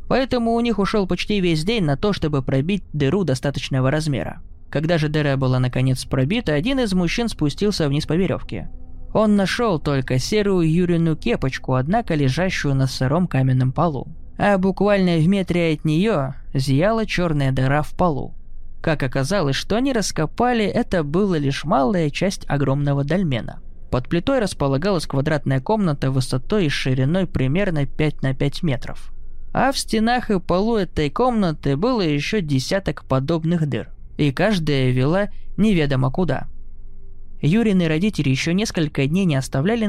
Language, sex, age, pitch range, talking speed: Russian, male, 20-39, 135-195 Hz, 150 wpm